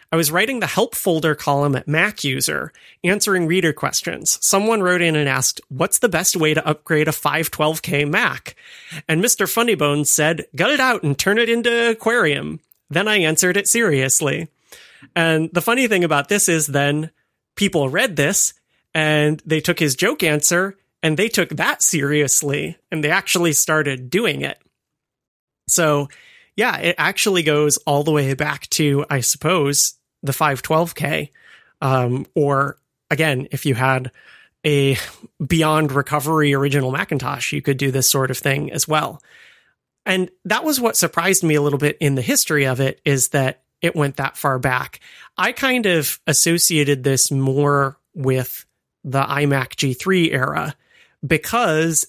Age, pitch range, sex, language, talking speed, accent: 30-49, 140-175 Hz, male, English, 160 wpm, American